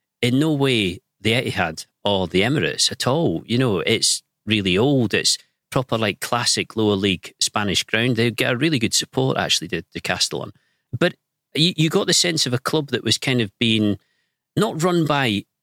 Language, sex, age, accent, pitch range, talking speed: English, male, 40-59, British, 105-150 Hz, 185 wpm